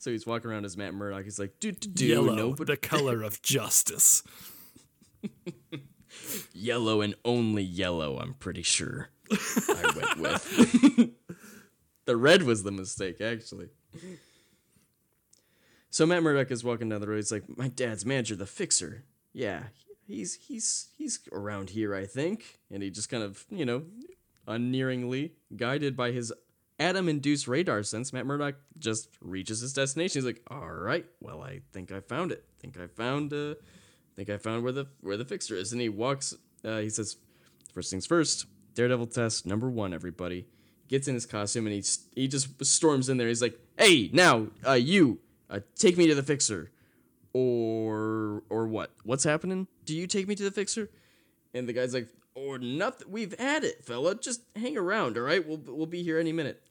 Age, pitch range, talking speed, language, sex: 10-29, 110-160 Hz, 180 wpm, English, male